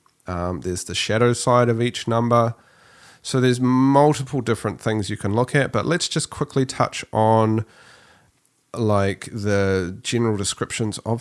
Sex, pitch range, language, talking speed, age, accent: male, 100-130 Hz, English, 150 wpm, 30-49, Australian